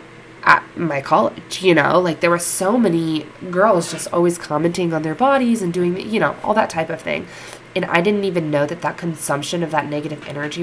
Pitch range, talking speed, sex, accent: 150-170 Hz, 215 wpm, female, American